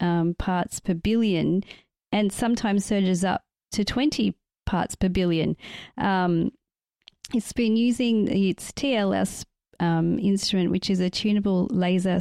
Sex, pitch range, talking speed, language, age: female, 185-230 Hz, 130 wpm, English, 30-49